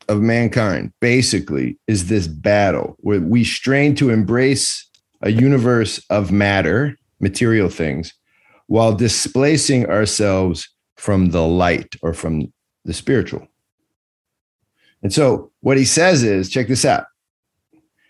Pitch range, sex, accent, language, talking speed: 95-140 Hz, male, American, English, 120 wpm